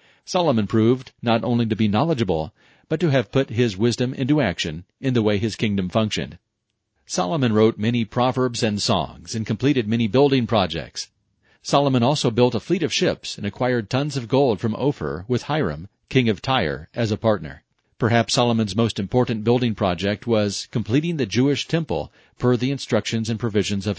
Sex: male